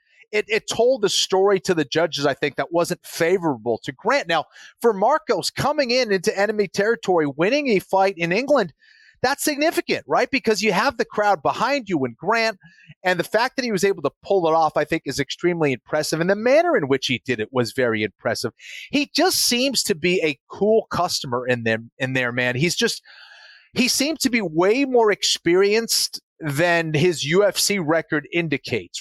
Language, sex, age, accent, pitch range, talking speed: English, male, 30-49, American, 155-220 Hz, 195 wpm